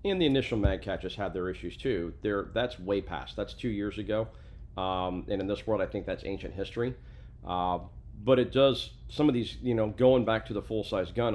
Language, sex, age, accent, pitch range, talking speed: English, male, 40-59, American, 90-110 Hz, 220 wpm